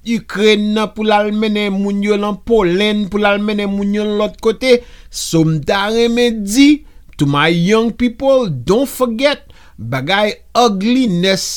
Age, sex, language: 50-69, male, English